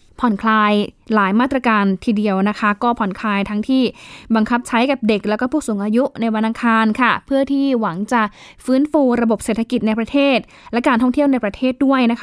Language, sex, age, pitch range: Thai, female, 10-29, 205-255 Hz